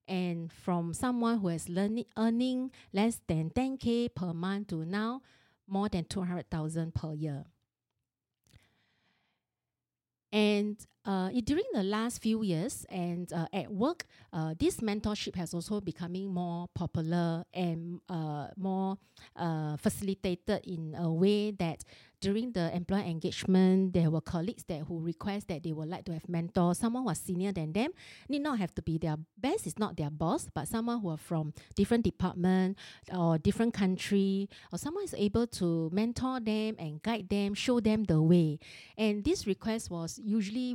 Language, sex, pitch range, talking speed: English, female, 170-210 Hz, 160 wpm